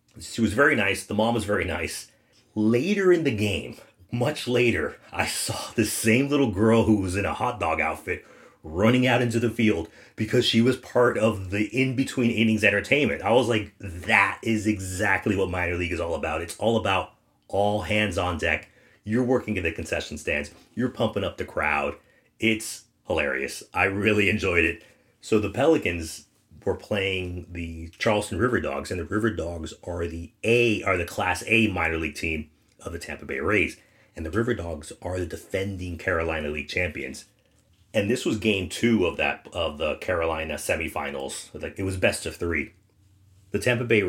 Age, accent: 30-49, American